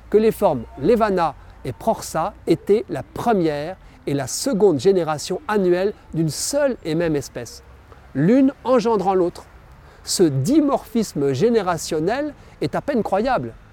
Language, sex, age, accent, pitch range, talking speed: French, male, 50-69, French, 150-215 Hz, 125 wpm